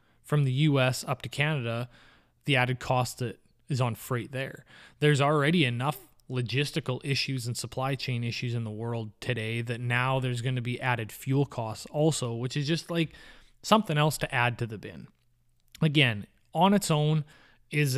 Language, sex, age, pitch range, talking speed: English, male, 20-39, 120-140 Hz, 175 wpm